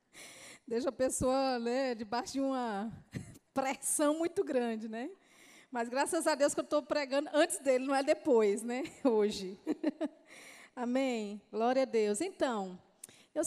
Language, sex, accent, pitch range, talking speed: Portuguese, female, Brazilian, 225-280 Hz, 145 wpm